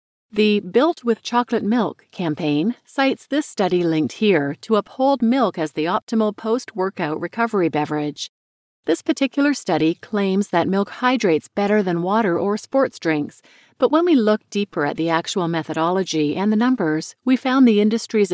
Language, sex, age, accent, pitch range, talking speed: English, female, 40-59, American, 165-230 Hz, 160 wpm